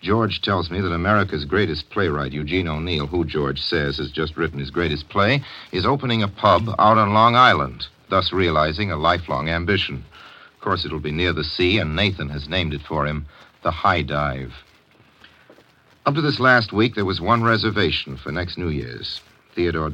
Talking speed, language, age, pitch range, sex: 185 wpm, English, 60-79, 75-95 Hz, male